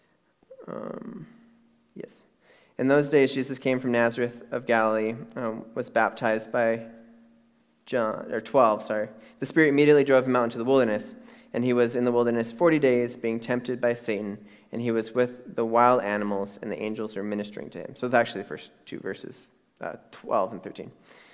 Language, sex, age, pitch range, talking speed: English, male, 20-39, 110-135 Hz, 185 wpm